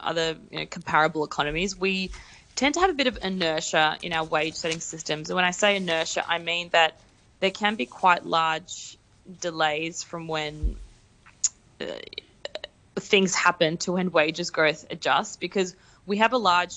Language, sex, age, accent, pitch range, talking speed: English, female, 20-39, Australian, 160-180 Hz, 160 wpm